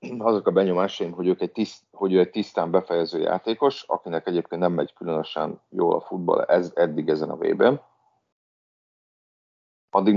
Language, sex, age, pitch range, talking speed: Hungarian, male, 40-59, 85-105 Hz, 150 wpm